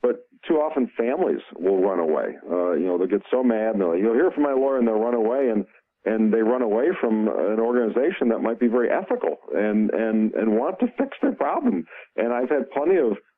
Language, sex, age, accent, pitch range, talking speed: English, male, 50-69, American, 105-145 Hz, 230 wpm